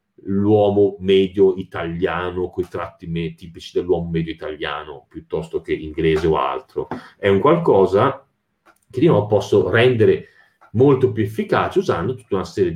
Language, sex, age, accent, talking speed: Italian, male, 30-49, native, 140 wpm